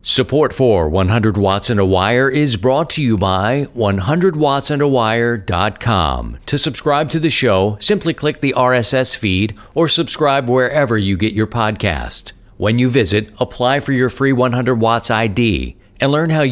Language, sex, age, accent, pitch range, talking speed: English, male, 50-69, American, 105-145 Hz, 155 wpm